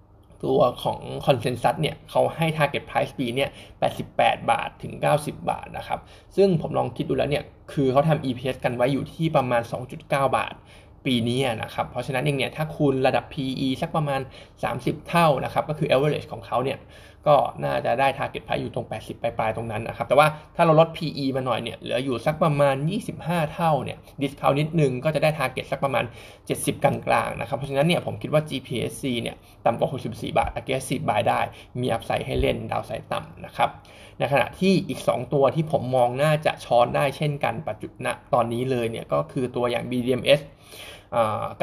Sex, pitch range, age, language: male, 120-150 Hz, 20-39, Thai